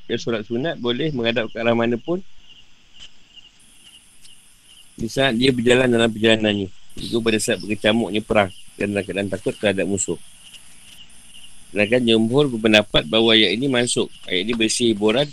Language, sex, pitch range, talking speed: Malay, male, 100-120 Hz, 140 wpm